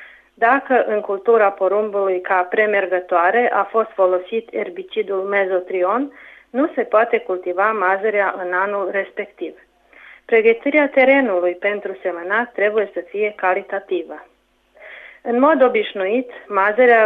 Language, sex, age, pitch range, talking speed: Romanian, female, 30-49, 195-230 Hz, 110 wpm